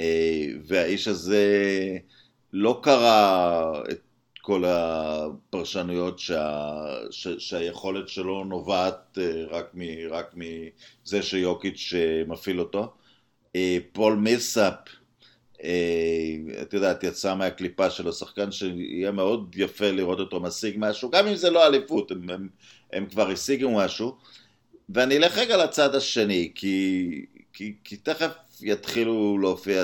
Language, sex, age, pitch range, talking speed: Hebrew, male, 50-69, 90-115 Hz, 110 wpm